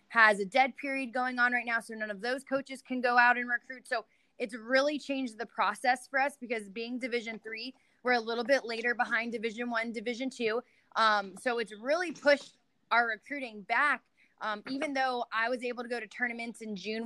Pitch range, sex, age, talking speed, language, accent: 220-250 Hz, female, 20-39, 210 wpm, English, American